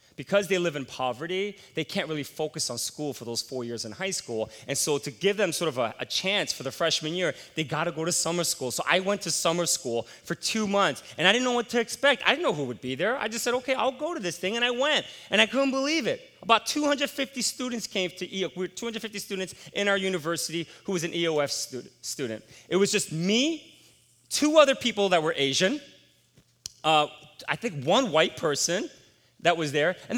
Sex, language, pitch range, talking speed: male, English, 130-205 Hz, 235 wpm